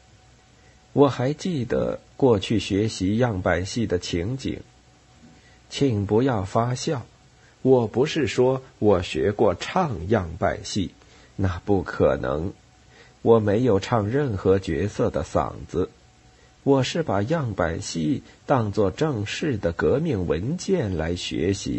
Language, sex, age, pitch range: Chinese, male, 50-69, 90-125 Hz